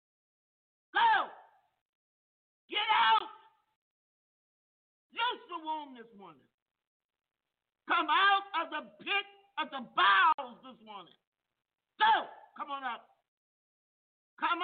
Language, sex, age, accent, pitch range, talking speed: English, male, 50-69, American, 280-405 Hz, 95 wpm